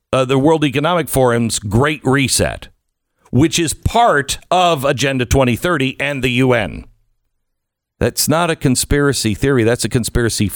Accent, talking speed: American, 135 wpm